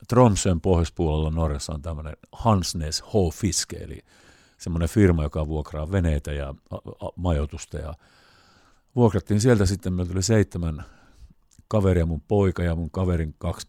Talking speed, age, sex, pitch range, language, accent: 130 wpm, 50-69, male, 80-95 Hz, Finnish, native